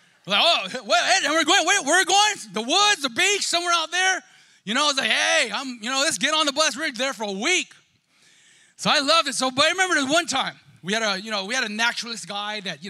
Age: 30-49